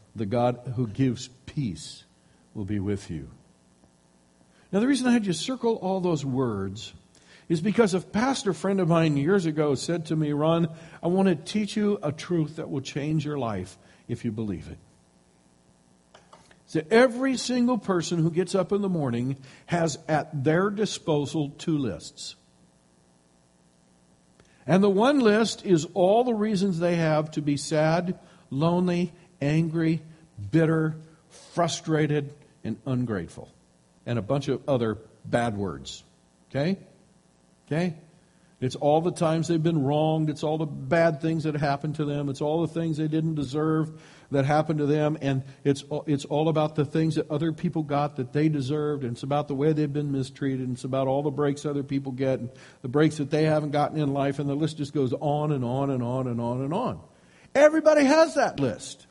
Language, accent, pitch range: English, American, 130-165 Hz